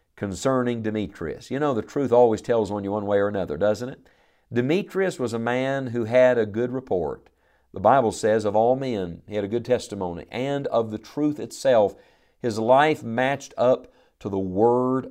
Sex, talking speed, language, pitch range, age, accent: male, 190 wpm, English, 105-130 Hz, 50-69, American